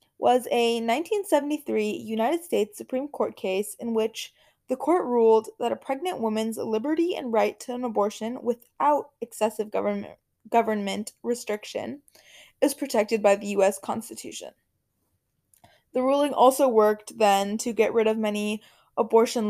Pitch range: 210-265 Hz